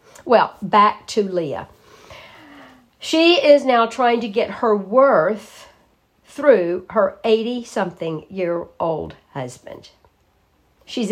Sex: female